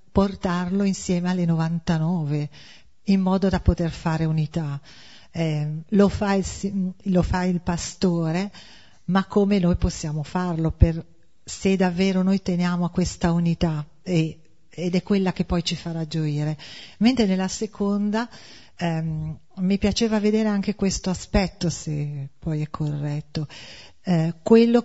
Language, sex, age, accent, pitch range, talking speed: Italian, female, 40-59, native, 165-195 Hz, 135 wpm